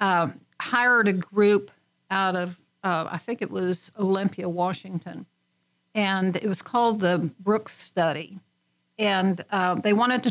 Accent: American